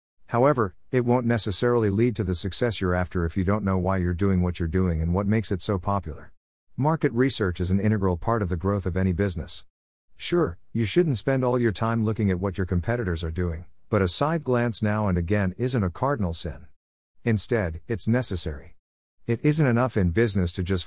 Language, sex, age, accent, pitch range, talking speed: English, male, 50-69, American, 90-115 Hz, 210 wpm